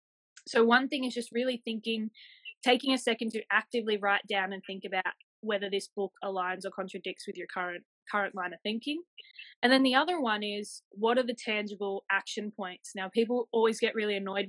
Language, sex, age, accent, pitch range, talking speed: English, female, 20-39, Australian, 195-230 Hz, 200 wpm